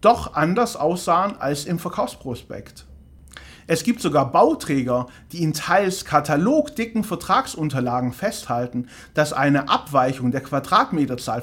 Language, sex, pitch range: German, male, 135-205 Hz